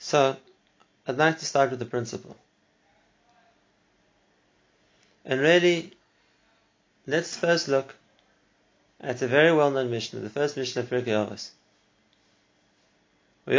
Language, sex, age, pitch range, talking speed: English, male, 30-49, 130-170 Hz, 105 wpm